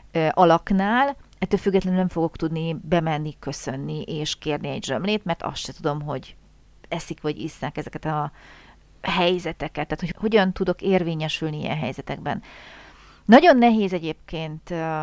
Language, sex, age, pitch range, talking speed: Hungarian, female, 40-59, 155-210 Hz, 130 wpm